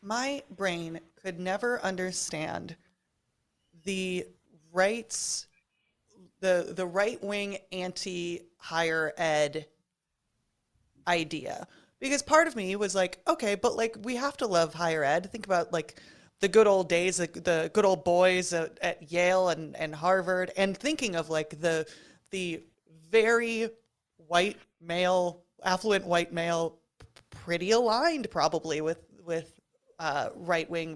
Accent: American